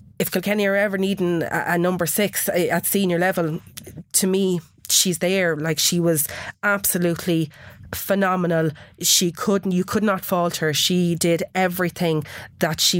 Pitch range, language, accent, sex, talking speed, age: 155-180 Hz, English, Irish, female, 150 wpm, 30-49